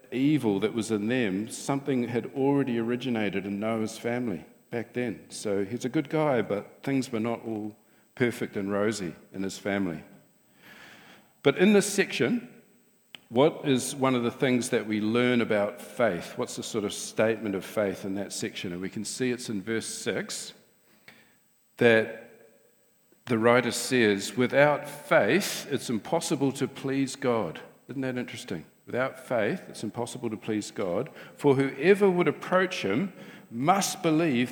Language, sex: English, male